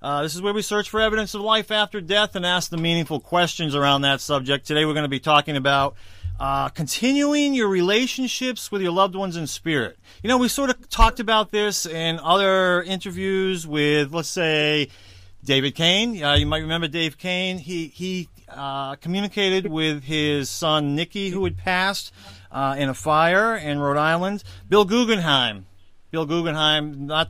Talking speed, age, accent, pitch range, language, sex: 180 wpm, 40-59, American, 135-180 Hz, English, male